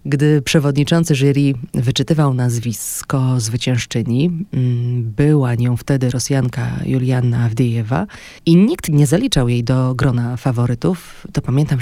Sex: female